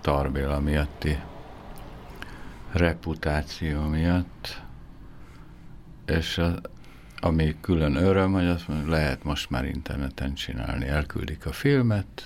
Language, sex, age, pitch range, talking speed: Hungarian, male, 60-79, 75-90 Hz, 100 wpm